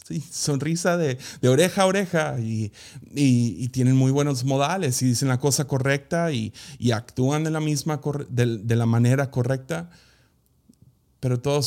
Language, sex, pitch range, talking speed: Spanish, male, 110-135 Hz, 165 wpm